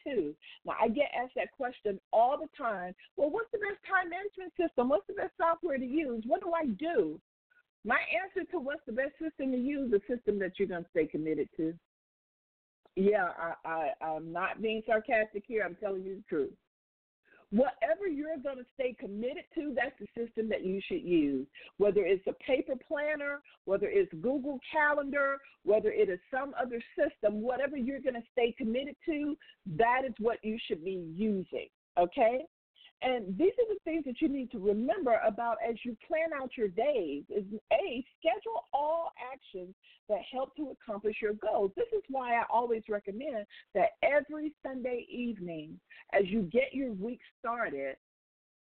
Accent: American